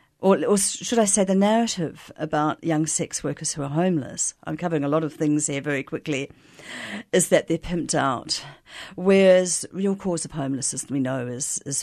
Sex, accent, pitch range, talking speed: female, British, 140-185 Hz, 190 wpm